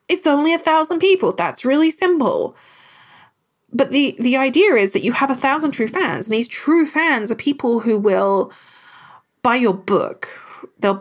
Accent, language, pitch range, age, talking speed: British, English, 205-290 Hz, 20-39, 175 wpm